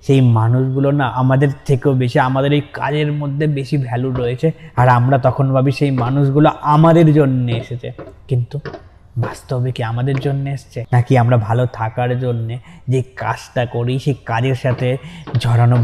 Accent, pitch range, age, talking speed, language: native, 120-140 Hz, 20-39, 150 wpm, Bengali